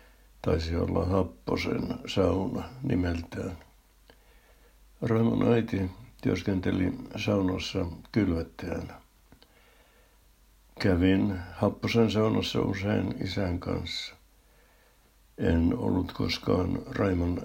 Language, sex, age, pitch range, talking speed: Finnish, male, 60-79, 90-110 Hz, 70 wpm